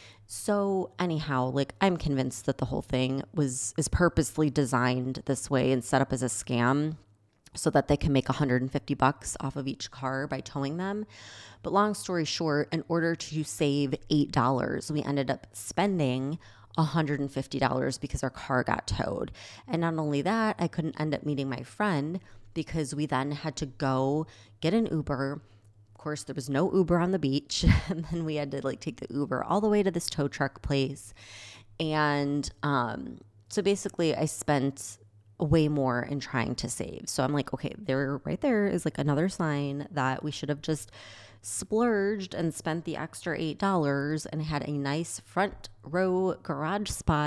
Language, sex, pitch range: English, female, 130-160 Hz